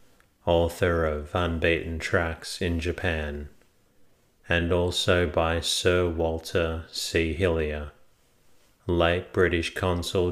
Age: 30-49